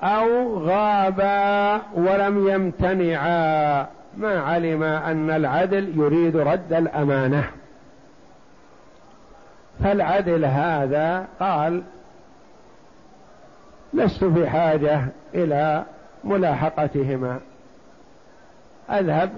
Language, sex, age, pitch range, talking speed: Arabic, male, 60-79, 145-190 Hz, 60 wpm